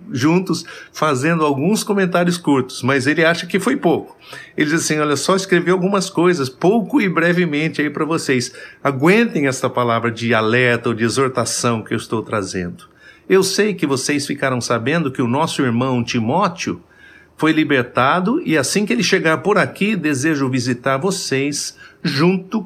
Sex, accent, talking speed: male, Brazilian, 160 wpm